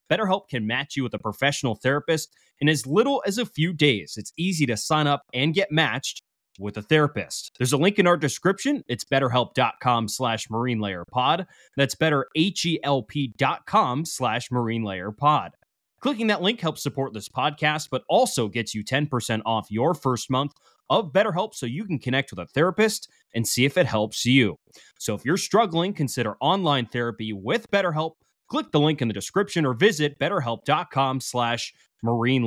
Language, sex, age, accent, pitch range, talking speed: English, male, 20-39, American, 115-155 Hz, 175 wpm